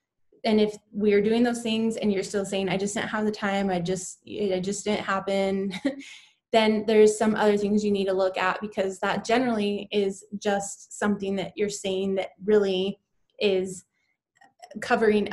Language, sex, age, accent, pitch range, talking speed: English, female, 20-39, American, 195-220 Hz, 175 wpm